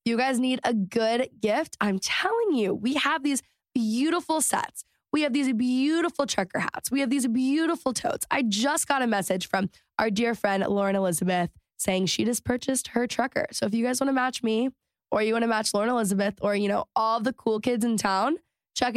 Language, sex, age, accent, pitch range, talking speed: English, female, 10-29, American, 205-265 Hz, 210 wpm